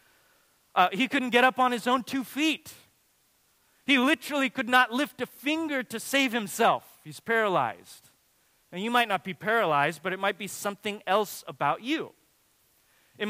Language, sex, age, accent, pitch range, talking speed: English, male, 30-49, American, 180-230 Hz, 165 wpm